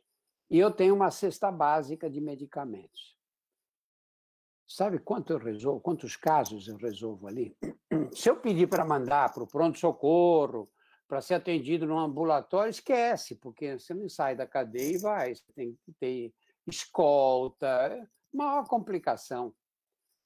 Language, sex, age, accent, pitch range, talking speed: Portuguese, male, 60-79, Brazilian, 135-215 Hz, 140 wpm